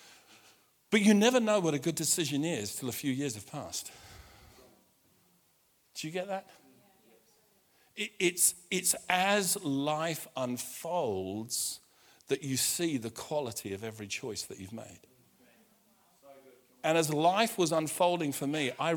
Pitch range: 115-160 Hz